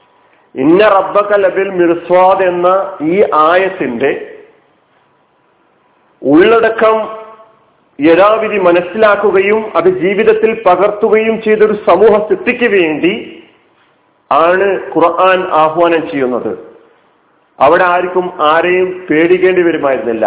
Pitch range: 165-220 Hz